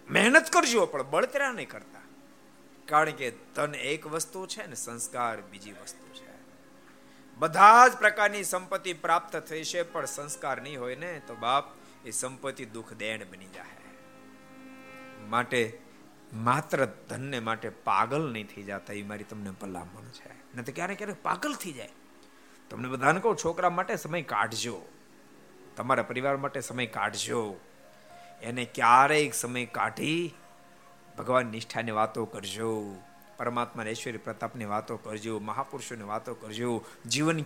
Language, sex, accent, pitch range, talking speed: Gujarati, male, native, 110-160 Hz, 60 wpm